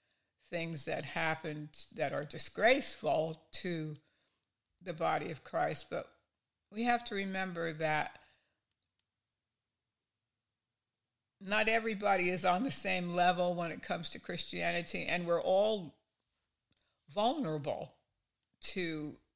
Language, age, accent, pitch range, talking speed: English, 60-79, American, 150-180 Hz, 105 wpm